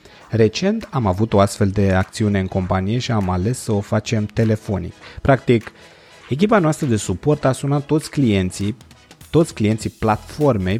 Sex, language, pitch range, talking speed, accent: male, Romanian, 105-135 Hz, 155 wpm, native